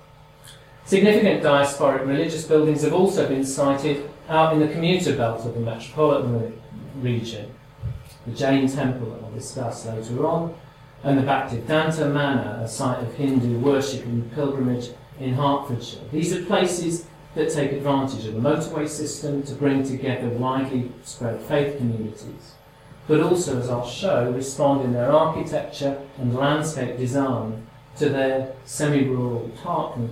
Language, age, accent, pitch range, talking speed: English, 40-59, British, 120-145 Hz, 140 wpm